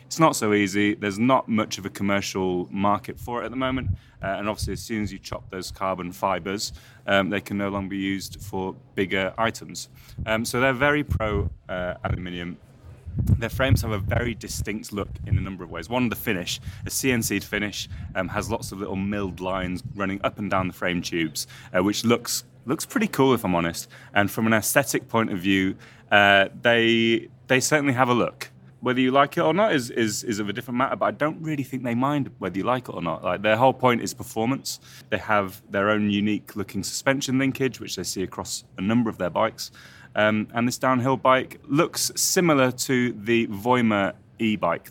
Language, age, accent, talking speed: English, 30-49, British, 210 wpm